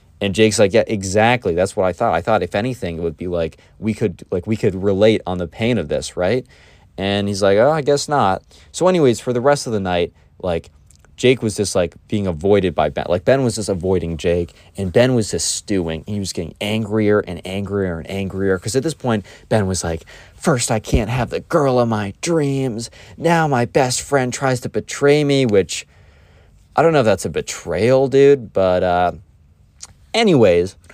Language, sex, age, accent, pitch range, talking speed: English, male, 20-39, American, 90-125 Hz, 210 wpm